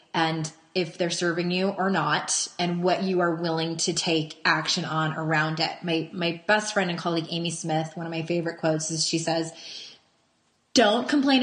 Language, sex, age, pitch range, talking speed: English, female, 20-39, 170-240 Hz, 190 wpm